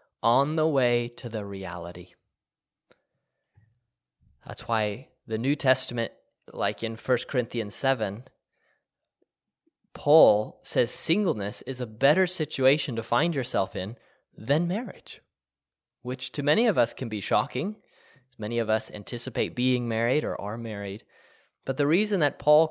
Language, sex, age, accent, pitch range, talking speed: English, male, 20-39, American, 115-150 Hz, 135 wpm